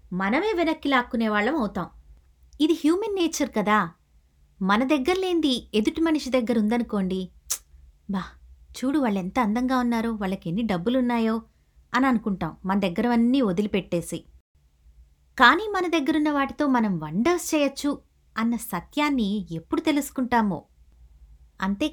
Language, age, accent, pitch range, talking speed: Telugu, 20-39, native, 185-275 Hz, 105 wpm